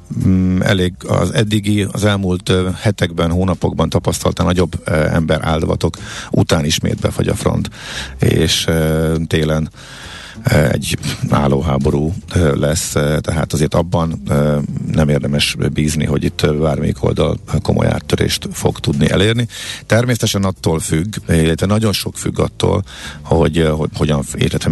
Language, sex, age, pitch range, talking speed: Hungarian, male, 50-69, 75-95 Hz, 115 wpm